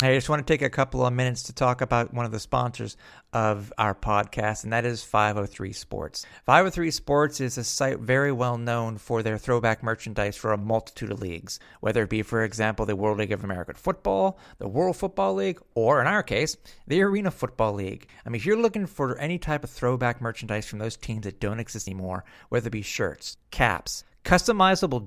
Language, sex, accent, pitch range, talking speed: English, male, American, 110-165 Hz, 210 wpm